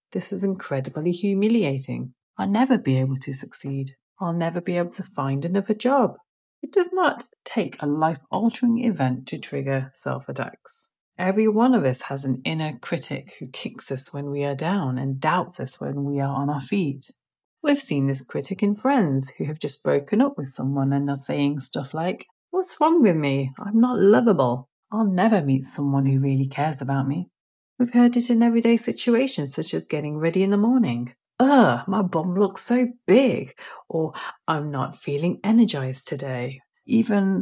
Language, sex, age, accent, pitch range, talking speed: English, female, 30-49, British, 140-220 Hz, 180 wpm